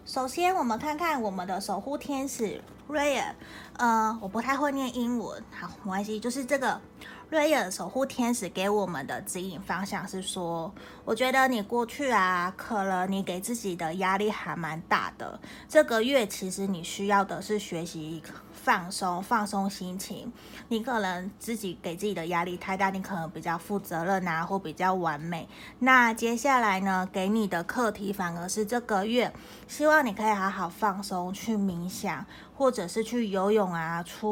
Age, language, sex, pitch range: 20-39, Chinese, female, 185-230 Hz